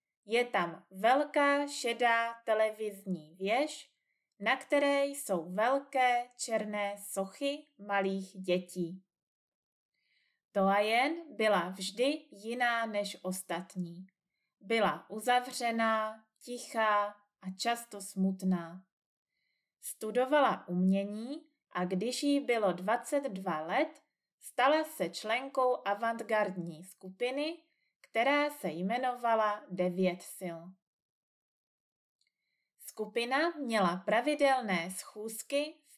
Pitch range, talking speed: 185-250 Hz, 85 wpm